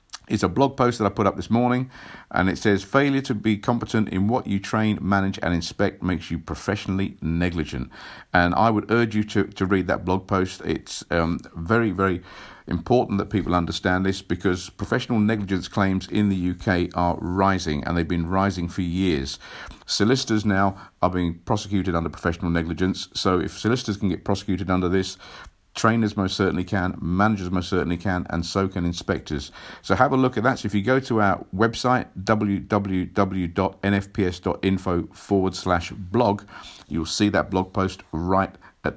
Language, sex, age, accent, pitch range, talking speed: English, male, 50-69, British, 90-110 Hz, 175 wpm